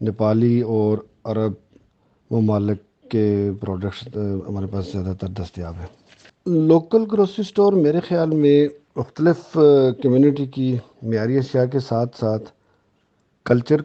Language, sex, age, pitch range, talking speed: Urdu, male, 50-69, 110-130 Hz, 115 wpm